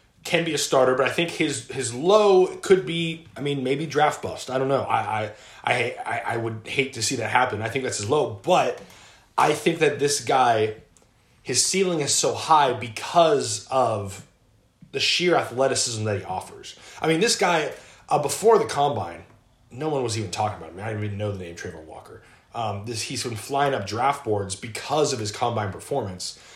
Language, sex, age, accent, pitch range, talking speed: English, male, 20-39, American, 105-140 Hz, 210 wpm